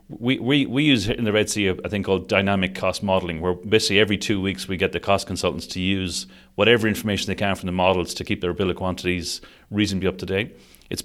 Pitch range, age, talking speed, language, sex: 95-115 Hz, 30-49, 245 wpm, English, male